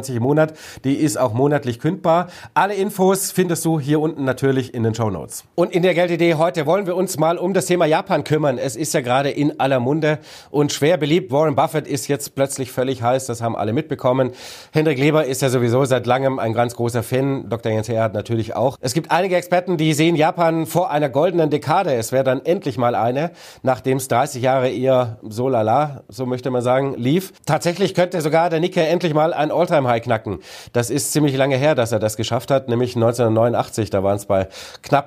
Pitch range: 120-155 Hz